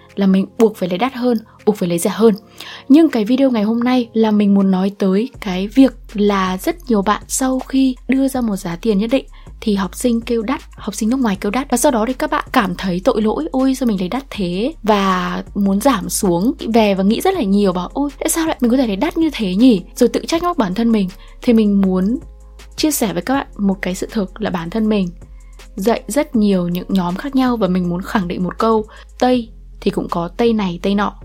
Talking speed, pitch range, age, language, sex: 255 wpm, 195-255 Hz, 10-29, Vietnamese, female